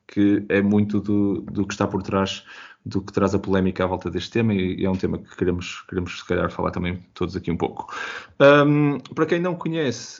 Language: Portuguese